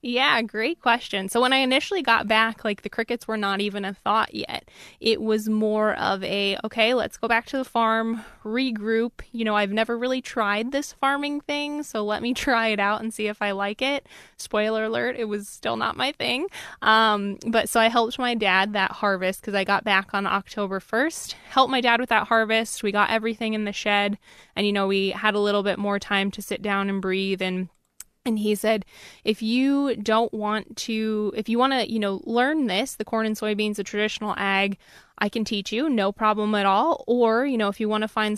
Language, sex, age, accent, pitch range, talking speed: English, female, 20-39, American, 205-230 Hz, 225 wpm